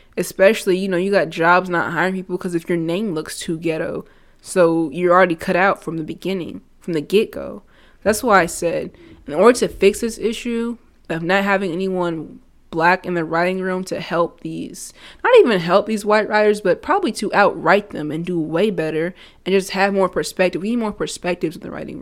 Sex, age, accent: female, 20-39, American